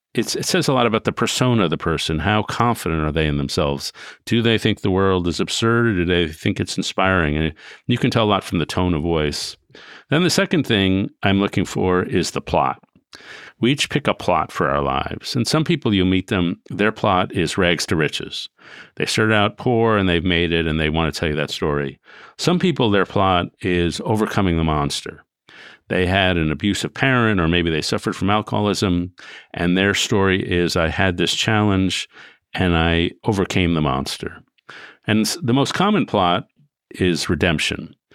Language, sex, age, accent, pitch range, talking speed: English, male, 50-69, American, 85-110 Hz, 200 wpm